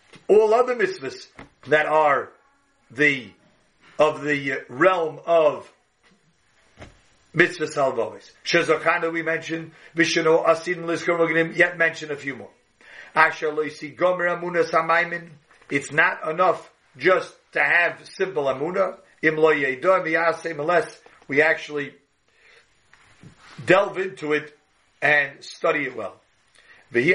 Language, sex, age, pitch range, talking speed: English, male, 50-69, 145-175 Hz, 105 wpm